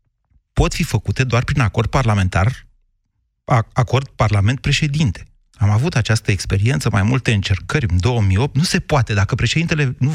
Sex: male